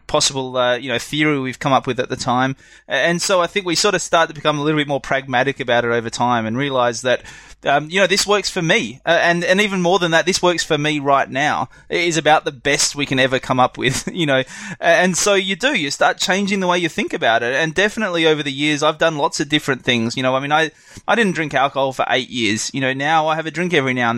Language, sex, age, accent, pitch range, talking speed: English, male, 20-39, Australian, 130-170 Hz, 280 wpm